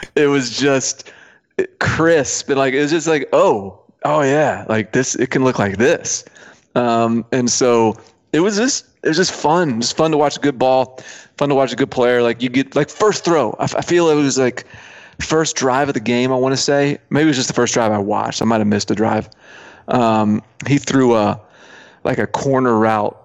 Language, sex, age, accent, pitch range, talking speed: English, male, 30-49, American, 110-135 Hz, 230 wpm